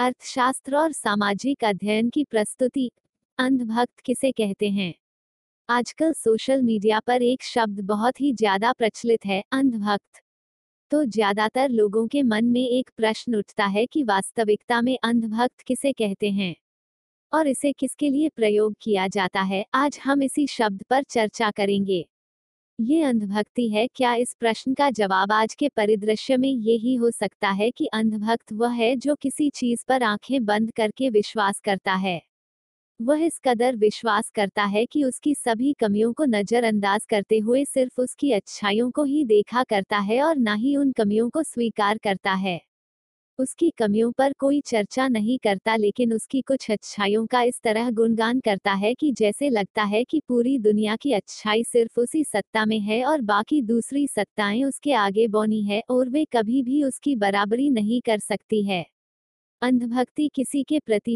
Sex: female